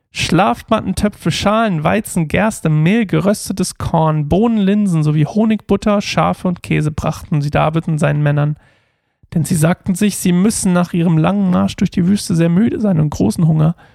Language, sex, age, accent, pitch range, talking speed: German, male, 40-59, German, 155-190 Hz, 170 wpm